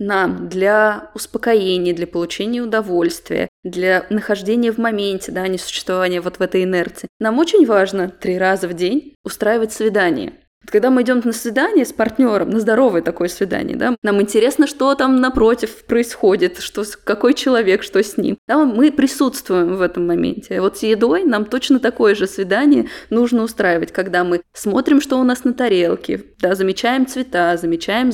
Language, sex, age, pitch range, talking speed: Russian, female, 20-39, 195-250 Hz, 160 wpm